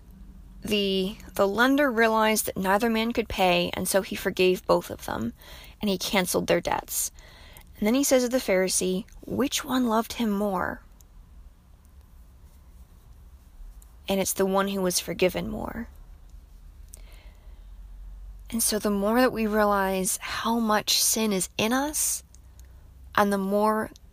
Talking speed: 140 wpm